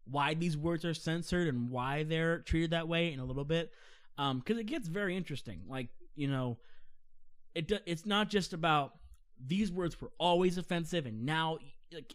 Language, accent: English, American